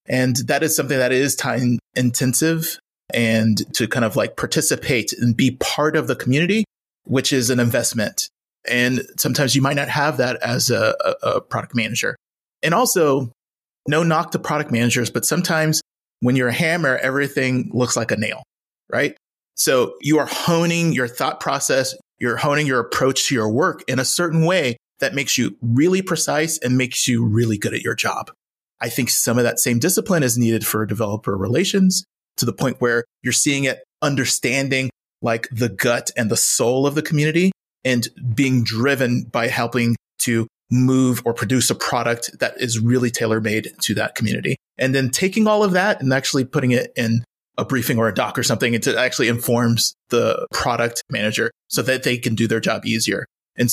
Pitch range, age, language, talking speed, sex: 120-145 Hz, 30-49, English, 185 wpm, male